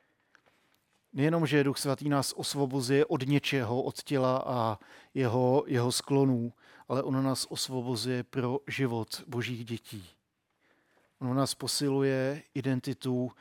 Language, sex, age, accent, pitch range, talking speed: Czech, male, 40-59, native, 120-140 Hz, 115 wpm